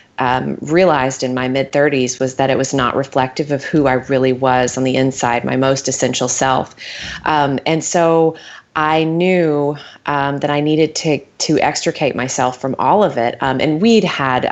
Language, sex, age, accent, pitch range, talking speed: English, female, 30-49, American, 130-155 Hz, 180 wpm